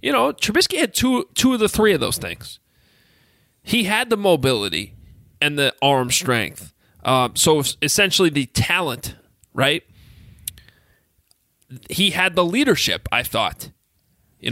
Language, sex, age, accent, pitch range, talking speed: English, male, 30-49, American, 130-200 Hz, 135 wpm